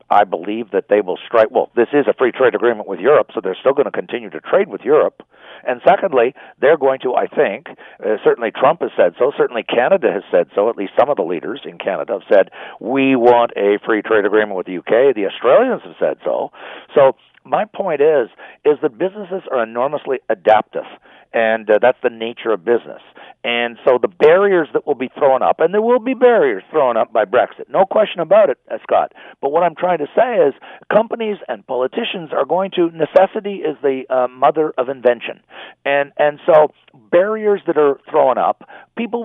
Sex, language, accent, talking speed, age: male, English, American, 210 wpm, 50-69